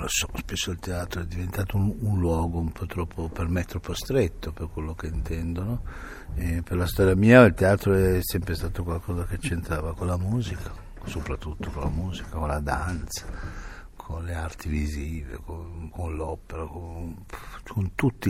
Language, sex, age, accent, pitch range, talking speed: Italian, male, 60-79, native, 80-90 Hz, 165 wpm